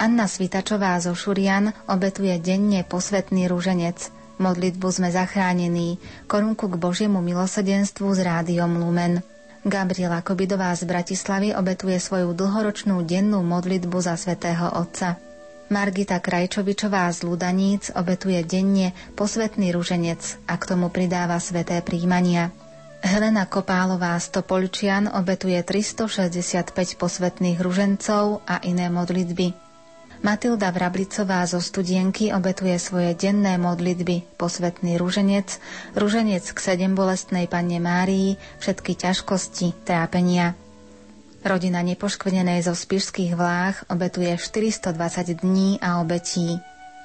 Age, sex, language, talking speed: 30-49, female, Slovak, 105 wpm